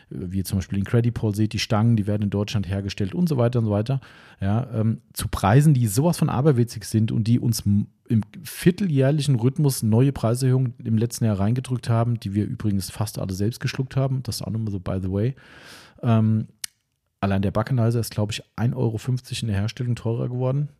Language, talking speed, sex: German, 210 wpm, male